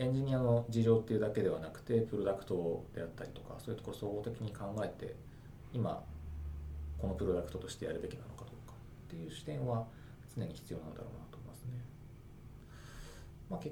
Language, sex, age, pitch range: Japanese, male, 40-59, 105-135 Hz